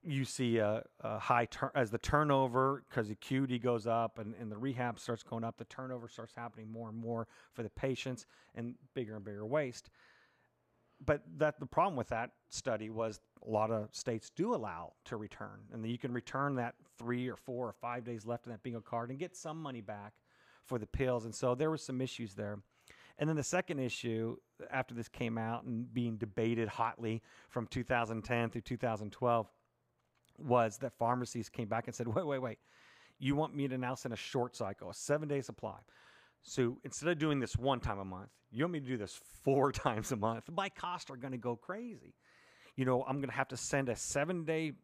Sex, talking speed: male, 210 wpm